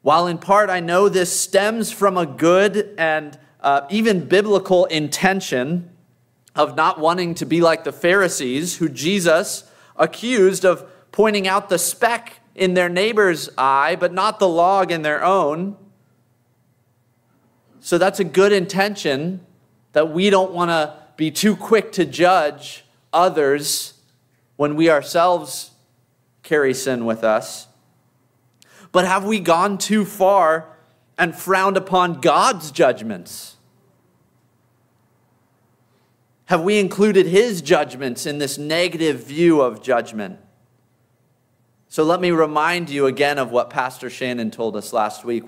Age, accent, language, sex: 30-49, American, English, male